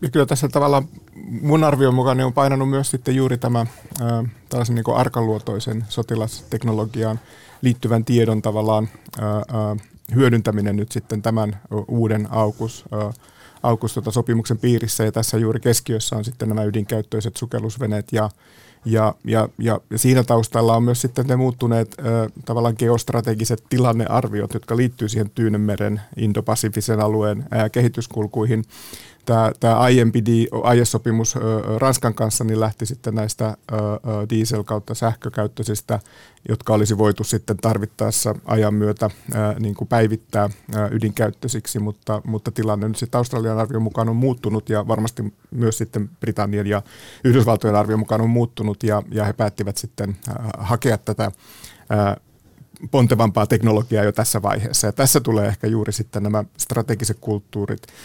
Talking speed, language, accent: 130 wpm, Finnish, native